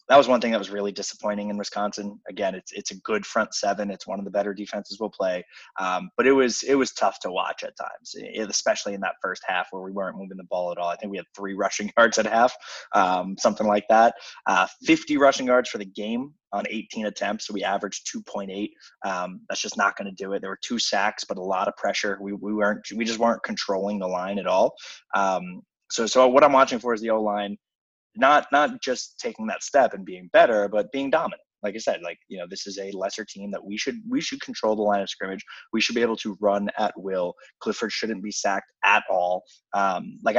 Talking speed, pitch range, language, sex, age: 245 wpm, 100-115 Hz, English, male, 20-39